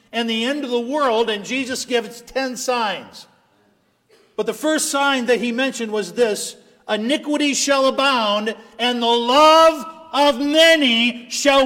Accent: American